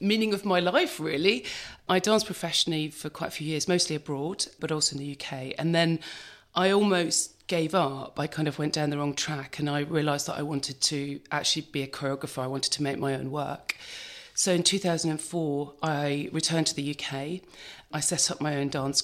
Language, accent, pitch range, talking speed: English, British, 145-175 Hz, 210 wpm